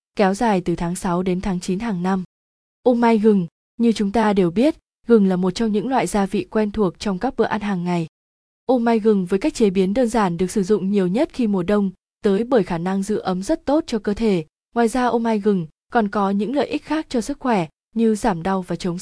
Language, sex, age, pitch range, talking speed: Vietnamese, female, 20-39, 190-230 Hz, 255 wpm